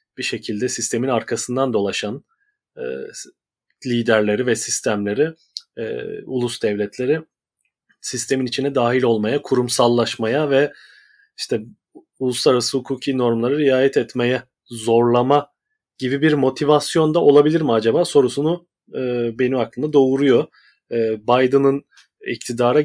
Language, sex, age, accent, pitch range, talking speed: Turkish, male, 30-49, native, 115-150 Hz, 100 wpm